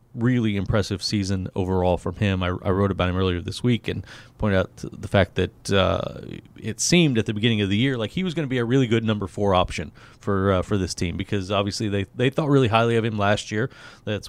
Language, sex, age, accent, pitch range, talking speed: English, male, 30-49, American, 95-115 Hz, 245 wpm